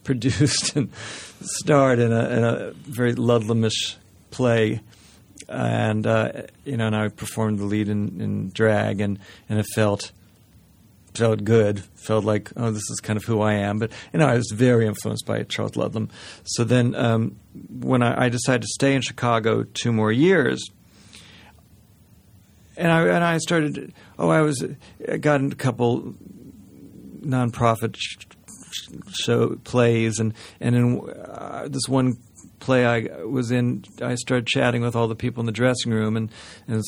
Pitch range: 105-125 Hz